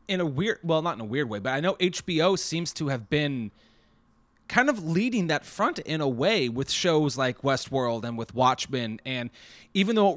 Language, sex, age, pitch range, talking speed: English, male, 30-49, 130-180 Hz, 210 wpm